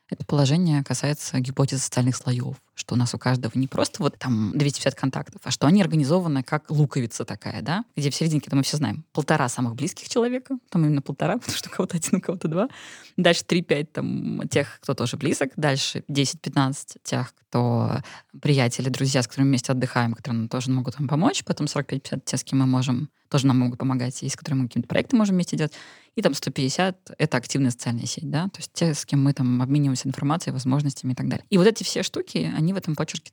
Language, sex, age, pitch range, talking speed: Russian, female, 20-39, 130-165 Hz, 210 wpm